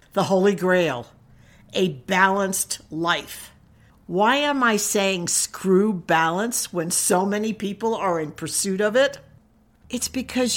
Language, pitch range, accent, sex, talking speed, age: English, 175-245 Hz, American, female, 130 wpm, 60-79